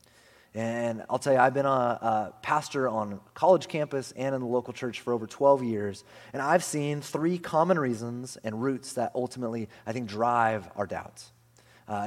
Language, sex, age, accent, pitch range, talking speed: English, male, 30-49, American, 115-150 Hz, 185 wpm